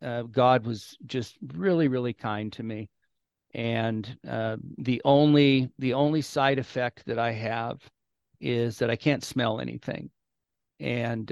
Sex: male